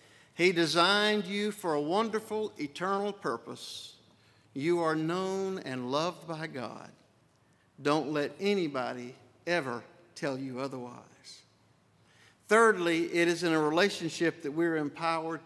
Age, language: 60-79, English